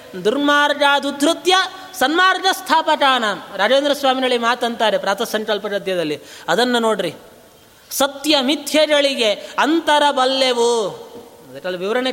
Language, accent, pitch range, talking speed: Kannada, native, 225-285 Hz, 80 wpm